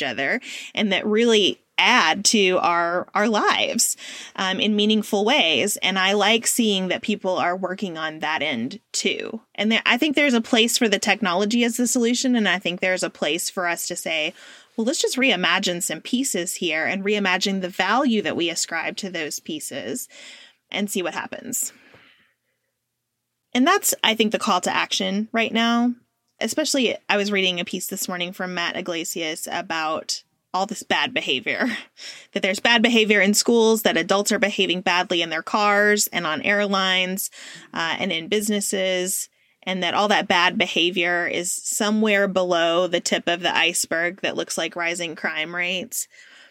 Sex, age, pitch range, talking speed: female, 20-39, 180-230 Hz, 175 wpm